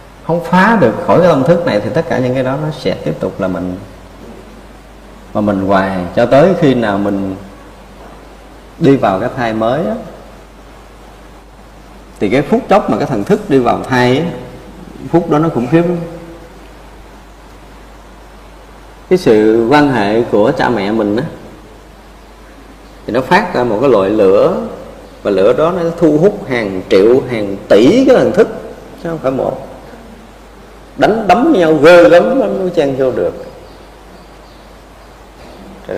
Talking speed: 155 wpm